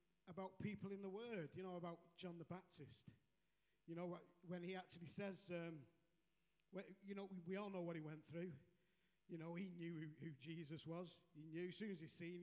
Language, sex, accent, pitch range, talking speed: English, male, British, 165-190 Hz, 210 wpm